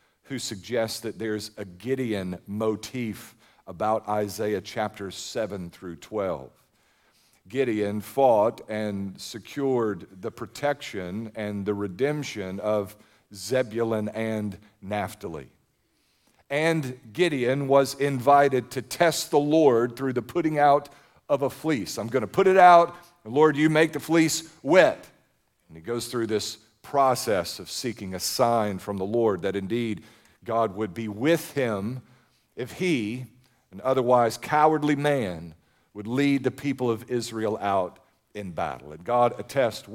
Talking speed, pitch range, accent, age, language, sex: 135 wpm, 110-150 Hz, American, 50-69, English, male